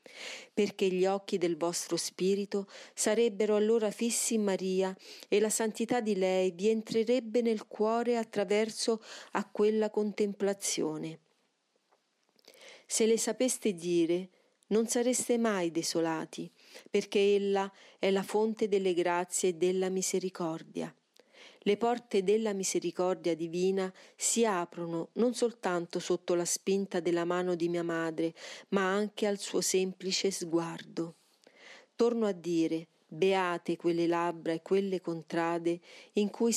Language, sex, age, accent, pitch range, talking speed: Italian, female, 40-59, native, 175-220 Hz, 125 wpm